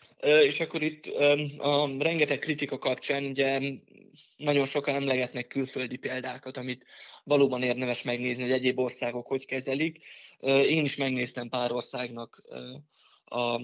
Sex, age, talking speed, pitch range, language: male, 20-39, 125 wpm, 125-140 Hz, Hungarian